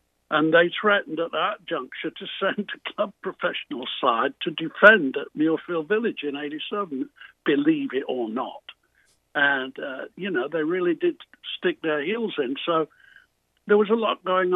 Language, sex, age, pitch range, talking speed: English, male, 60-79, 155-240 Hz, 165 wpm